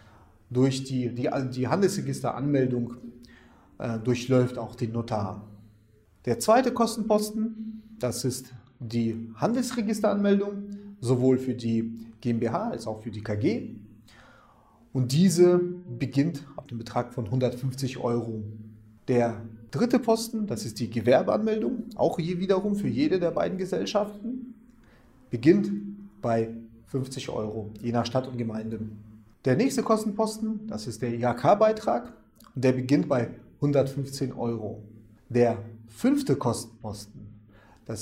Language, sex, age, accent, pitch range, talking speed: German, male, 30-49, German, 115-185 Hz, 120 wpm